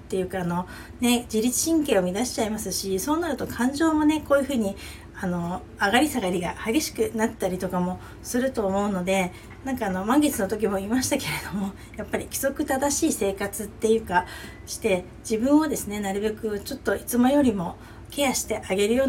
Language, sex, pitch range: Japanese, female, 195-245 Hz